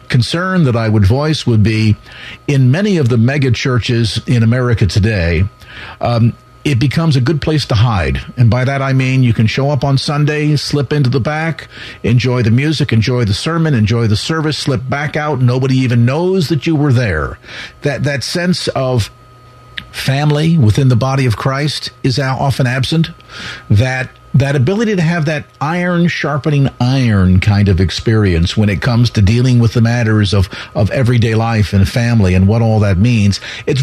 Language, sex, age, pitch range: English, male, 50-69, 115-145 Hz